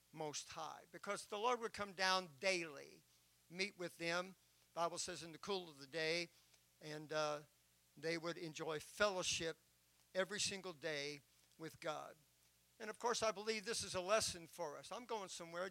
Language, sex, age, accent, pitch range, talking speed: English, male, 50-69, American, 155-200 Hz, 170 wpm